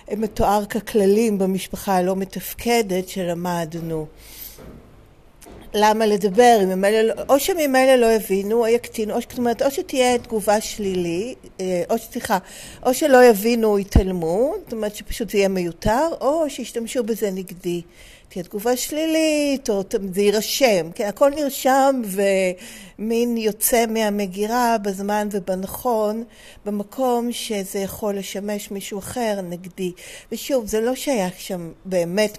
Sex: female